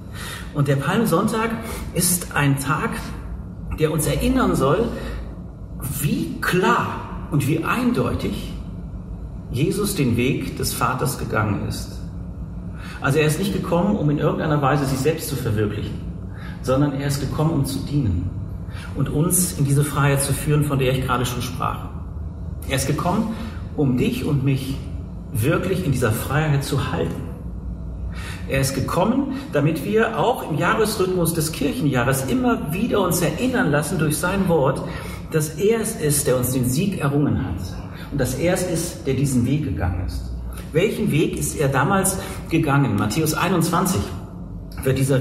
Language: German